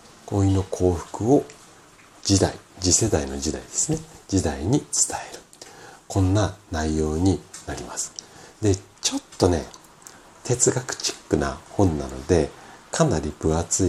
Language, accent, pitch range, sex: Japanese, native, 80-120 Hz, male